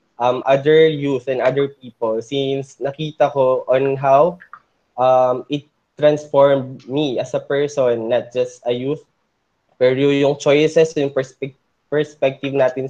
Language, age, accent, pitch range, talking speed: Filipino, 20-39, native, 120-140 Hz, 135 wpm